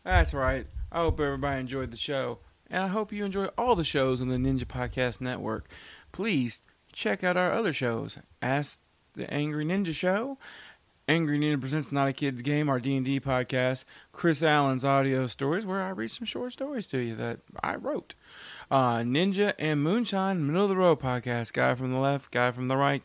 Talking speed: 195 wpm